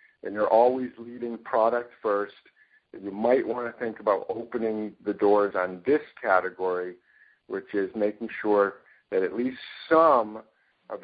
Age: 50-69